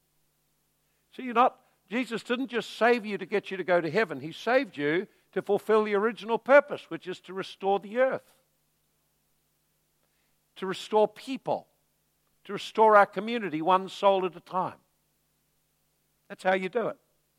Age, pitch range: 60-79, 150-210 Hz